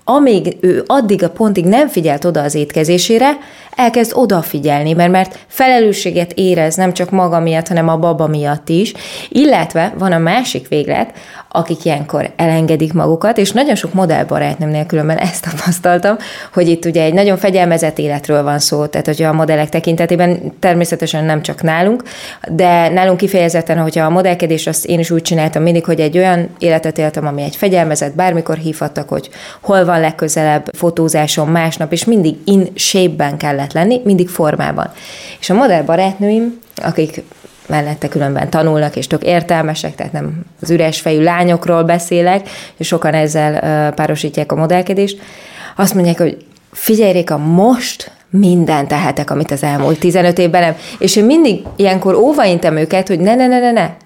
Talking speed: 160 wpm